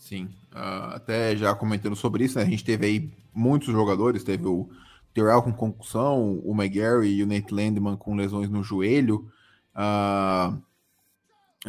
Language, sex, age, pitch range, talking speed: Portuguese, male, 20-39, 100-125 Hz, 155 wpm